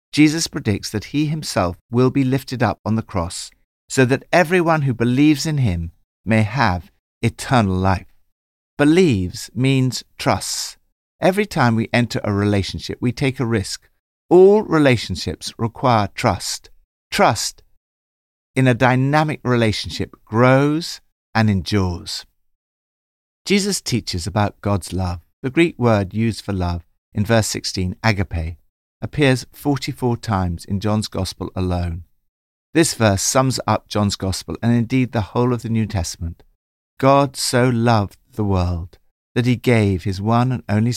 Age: 60-79